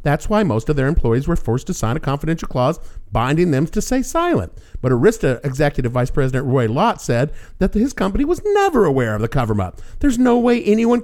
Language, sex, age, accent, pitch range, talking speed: English, male, 50-69, American, 125-200 Hz, 210 wpm